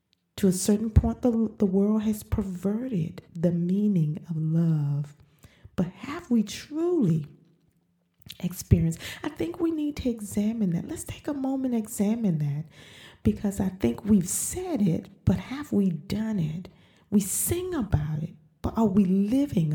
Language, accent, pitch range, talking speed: English, American, 155-225 Hz, 150 wpm